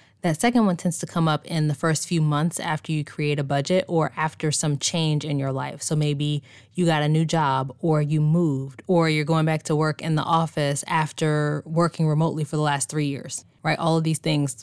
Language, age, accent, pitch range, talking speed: English, 10-29, American, 145-170 Hz, 230 wpm